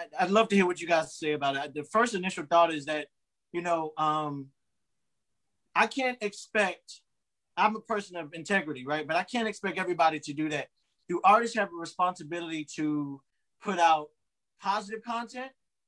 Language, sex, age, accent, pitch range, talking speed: English, male, 30-49, American, 165-215 Hz, 175 wpm